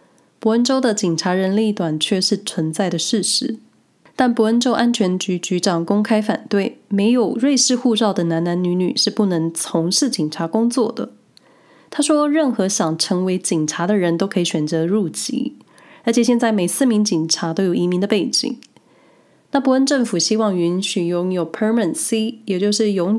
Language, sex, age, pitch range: Chinese, female, 20-39, 175-230 Hz